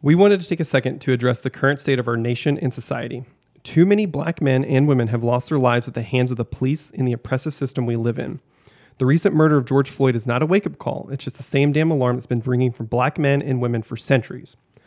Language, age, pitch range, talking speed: English, 30-49, 125-145 Hz, 265 wpm